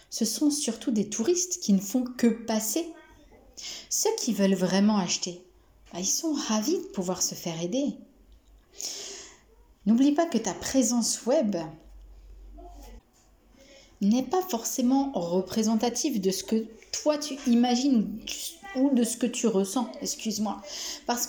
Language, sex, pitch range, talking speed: French, female, 195-265 Hz, 135 wpm